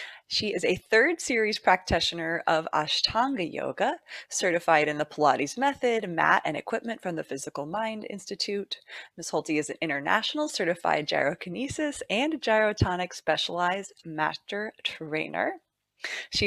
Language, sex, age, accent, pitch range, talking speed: English, female, 20-39, American, 165-225 Hz, 130 wpm